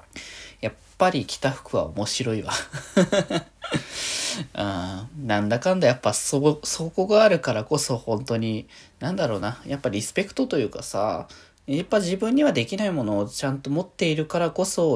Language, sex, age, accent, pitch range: Japanese, male, 20-39, native, 110-155 Hz